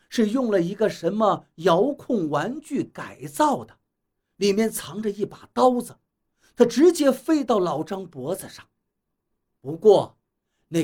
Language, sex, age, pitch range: Chinese, male, 50-69, 145-225 Hz